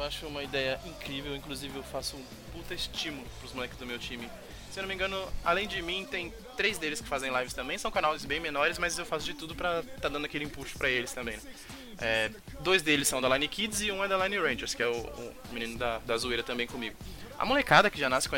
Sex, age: male, 20-39